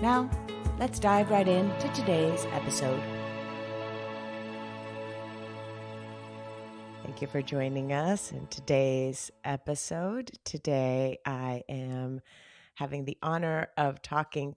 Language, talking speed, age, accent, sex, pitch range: English, 95 wpm, 30-49, American, female, 135-160 Hz